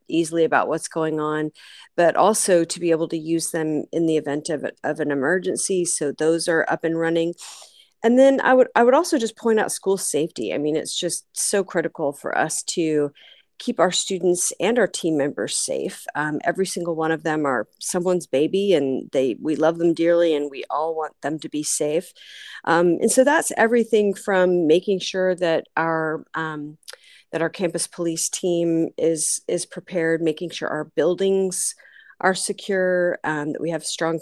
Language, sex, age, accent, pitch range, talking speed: English, female, 40-59, American, 160-190 Hz, 190 wpm